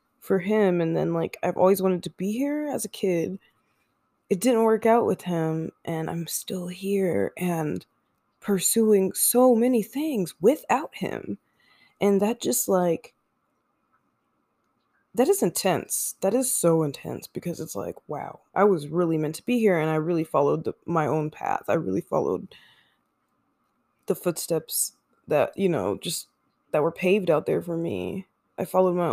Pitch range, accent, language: 165-200 Hz, American, English